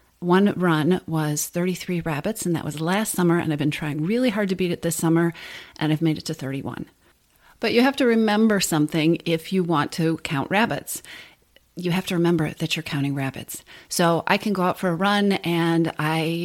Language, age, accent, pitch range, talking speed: English, 40-59, American, 165-215 Hz, 210 wpm